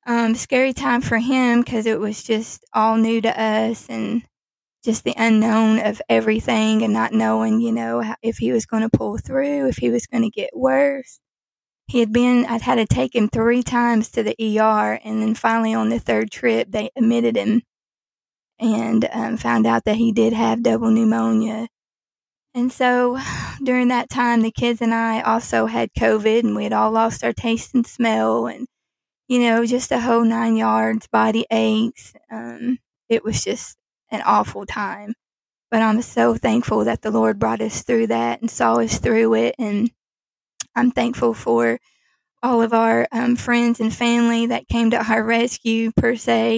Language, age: English, 20-39